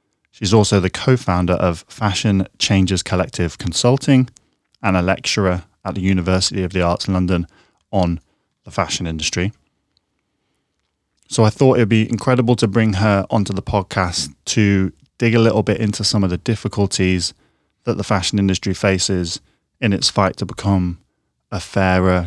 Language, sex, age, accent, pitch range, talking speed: English, male, 20-39, British, 90-105 Hz, 155 wpm